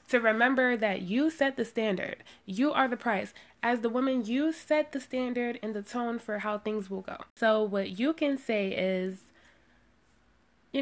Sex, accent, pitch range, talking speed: female, American, 205-265 Hz, 185 wpm